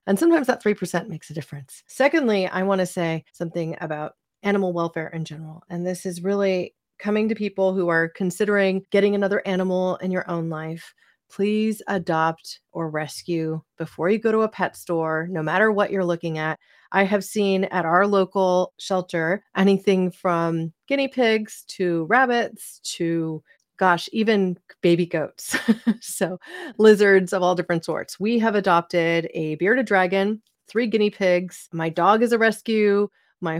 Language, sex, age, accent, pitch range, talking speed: English, female, 30-49, American, 165-200 Hz, 165 wpm